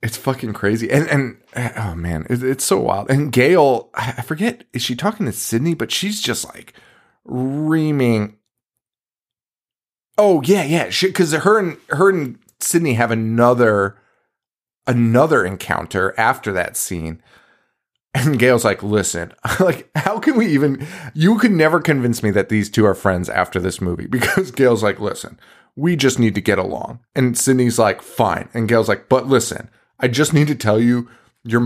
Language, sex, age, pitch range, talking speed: English, male, 30-49, 120-185 Hz, 165 wpm